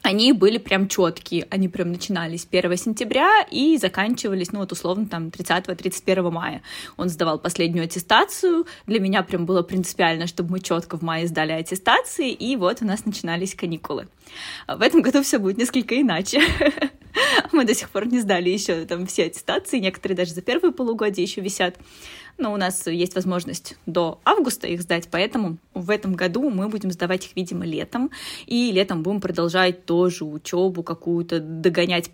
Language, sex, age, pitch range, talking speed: Russian, female, 20-39, 175-225 Hz, 170 wpm